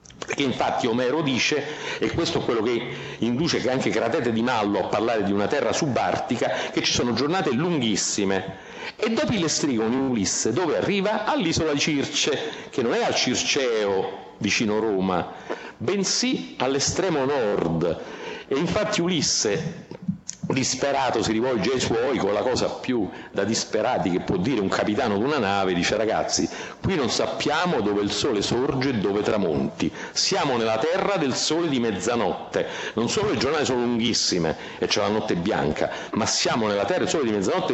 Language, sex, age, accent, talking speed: Italian, male, 50-69, native, 170 wpm